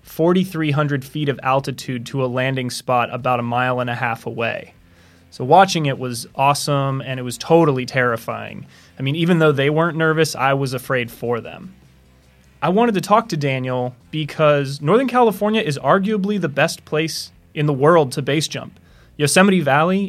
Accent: American